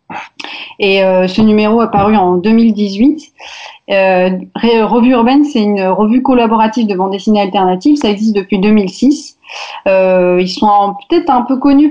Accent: French